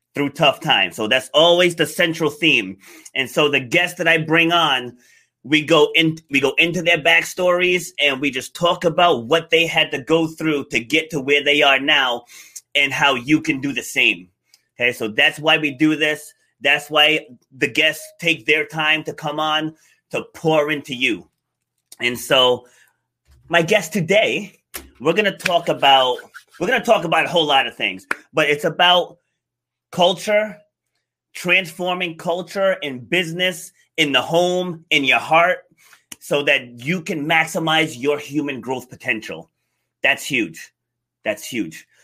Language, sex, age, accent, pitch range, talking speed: English, male, 30-49, American, 145-175 Hz, 165 wpm